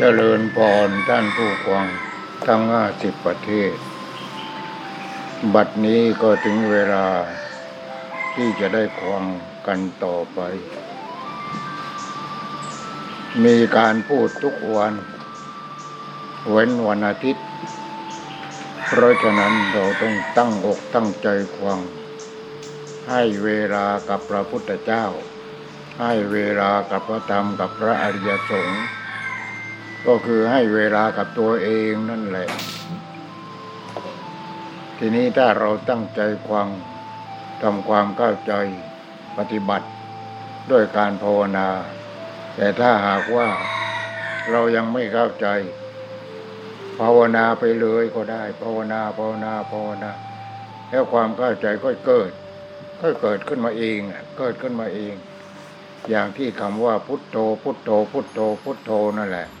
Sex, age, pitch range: male, 60-79, 100-120 Hz